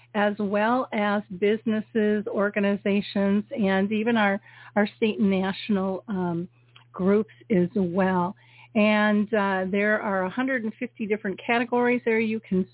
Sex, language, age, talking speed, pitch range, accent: female, English, 50-69, 125 wpm, 185-220 Hz, American